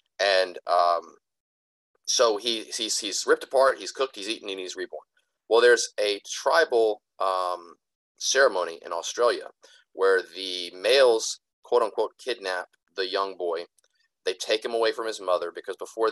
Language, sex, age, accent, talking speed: English, male, 30-49, American, 145 wpm